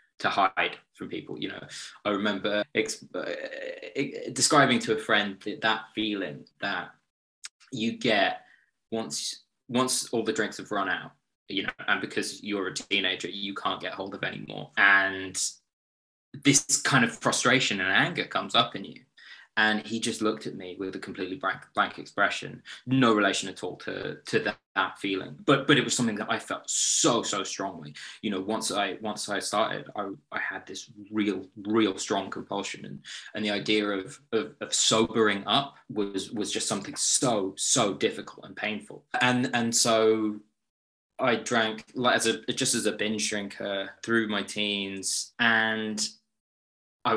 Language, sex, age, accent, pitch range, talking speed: English, male, 20-39, British, 100-110 Hz, 170 wpm